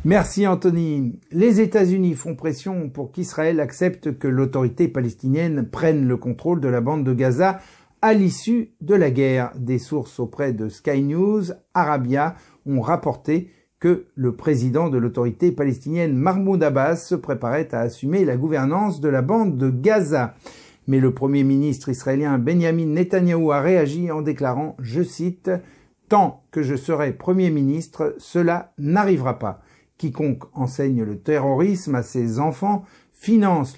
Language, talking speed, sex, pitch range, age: French, 150 wpm, male, 130-175 Hz, 50-69